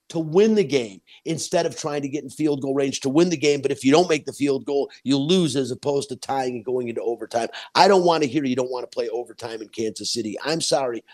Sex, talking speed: male, 275 wpm